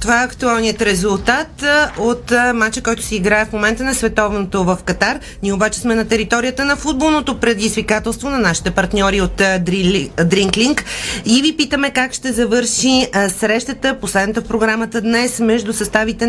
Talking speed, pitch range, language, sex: 150 wpm, 195-235 Hz, Bulgarian, female